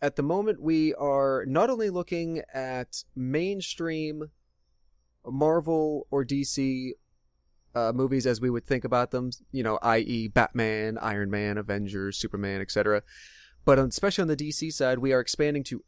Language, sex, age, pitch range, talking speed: English, male, 30-49, 110-150 Hz, 150 wpm